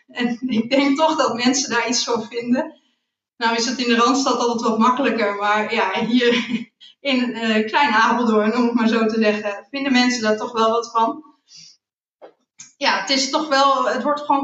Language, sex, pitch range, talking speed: Dutch, female, 225-260 Hz, 195 wpm